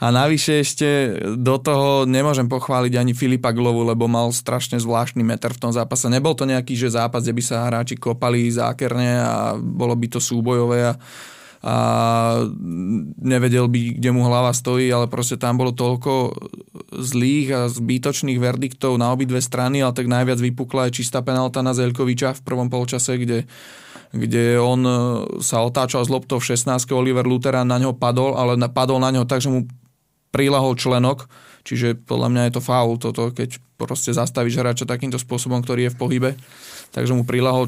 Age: 20-39